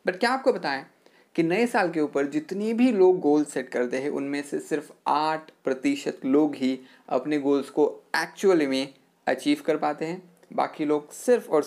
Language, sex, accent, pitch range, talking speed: Hindi, male, native, 140-185 Hz, 185 wpm